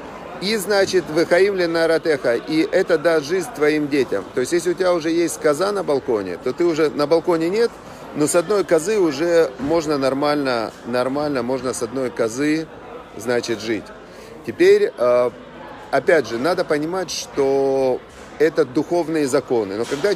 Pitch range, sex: 130-170 Hz, male